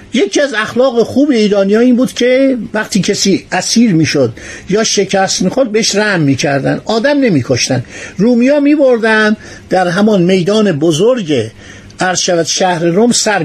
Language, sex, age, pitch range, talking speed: Persian, male, 50-69, 165-230 Hz, 145 wpm